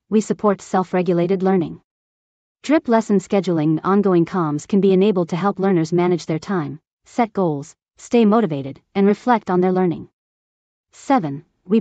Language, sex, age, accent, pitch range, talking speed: English, female, 40-59, American, 170-210 Hz, 160 wpm